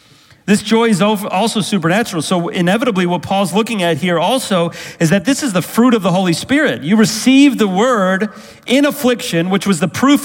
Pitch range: 150-215 Hz